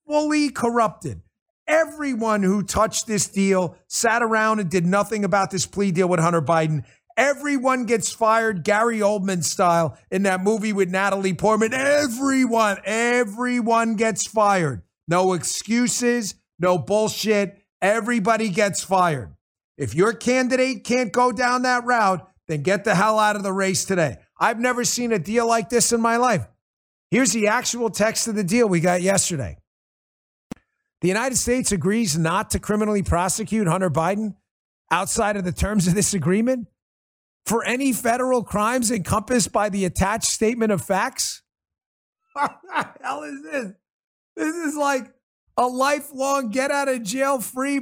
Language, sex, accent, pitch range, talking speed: English, male, American, 185-250 Hz, 150 wpm